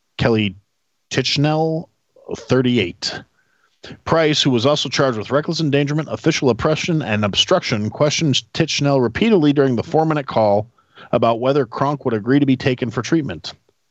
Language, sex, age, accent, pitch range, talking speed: English, male, 40-59, American, 110-140 Hz, 140 wpm